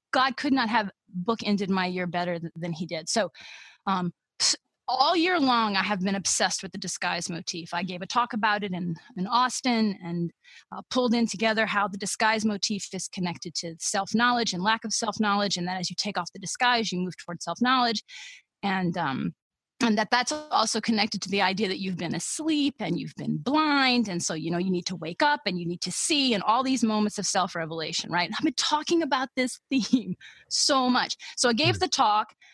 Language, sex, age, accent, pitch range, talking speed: English, female, 30-49, American, 180-250 Hz, 215 wpm